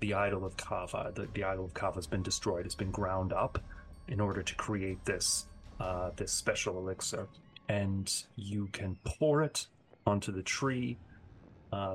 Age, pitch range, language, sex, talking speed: 30-49, 95-110 Hz, English, male, 165 wpm